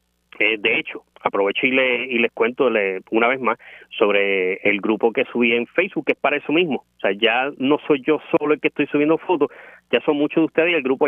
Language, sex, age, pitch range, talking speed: Spanish, male, 30-49, 110-150 Hz, 235 wpm